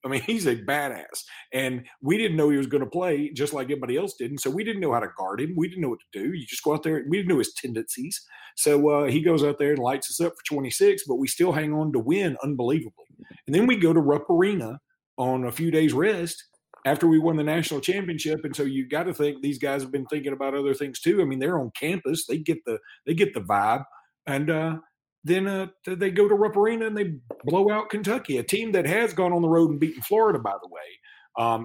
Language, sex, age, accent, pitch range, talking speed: English, male, 40-59, American, 140-185 Hz, 265 wpm